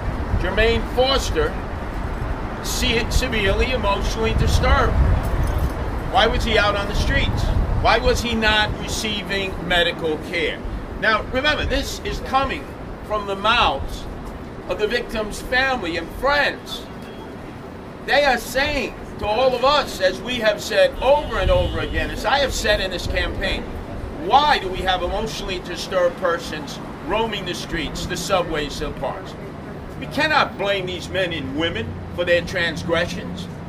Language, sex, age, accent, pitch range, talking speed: English, male, 50-69, American, 125-200 Hz, 145 wpm